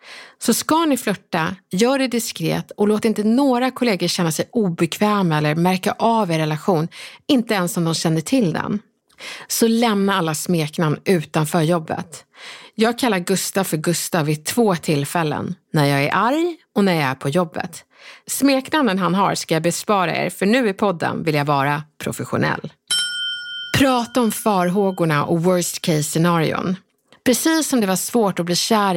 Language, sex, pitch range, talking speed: Swedish, female, 165-225 Hz, 165 wpm